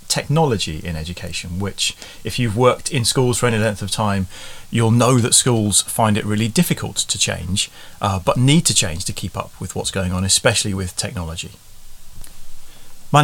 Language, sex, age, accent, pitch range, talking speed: English, male, 30-49, British, 95-125 Hz, 180 wpm